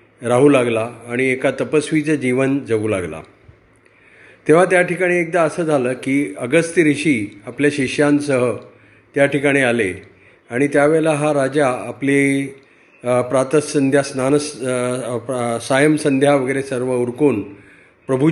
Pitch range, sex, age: 120-150 Hz, male, 40-59